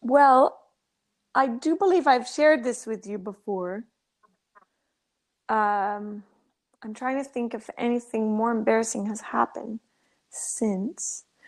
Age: 30-49